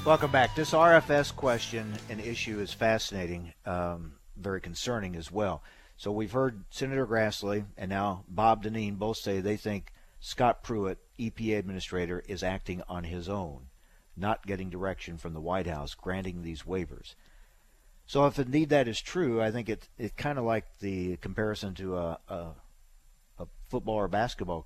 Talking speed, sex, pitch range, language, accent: 165 wpm, male, 85-110 Hz, English, American